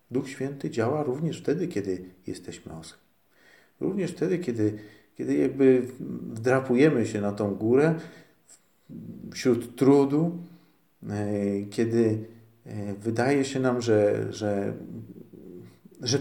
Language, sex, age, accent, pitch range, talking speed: Polish, male, 40-59, native, 95-125 Hz, 95 wpm